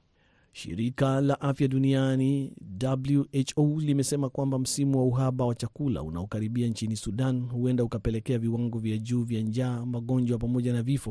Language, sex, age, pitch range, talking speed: Swahili, male, 40-59, 115-135 Hz, 140 wpm